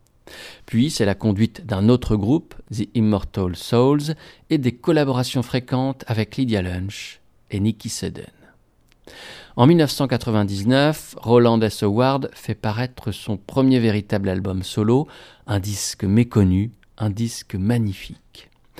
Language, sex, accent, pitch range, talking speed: French, male, French, 100-125 Hz, 120 wpm